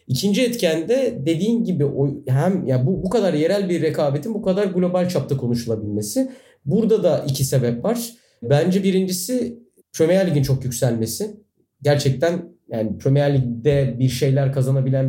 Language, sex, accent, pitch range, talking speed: Turkish, male, native, 120-170 Hz, 145 wpm